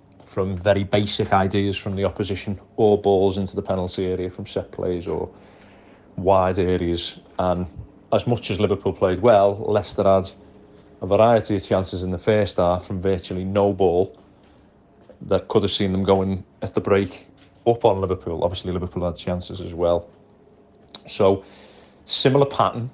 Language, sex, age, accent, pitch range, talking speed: English, male, 30-49, British, 95-100 Hz, 160 wpm